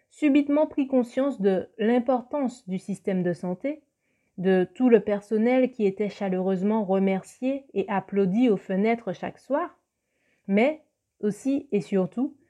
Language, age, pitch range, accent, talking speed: French, 30-49, 190-245 Hz, French, 130 wpm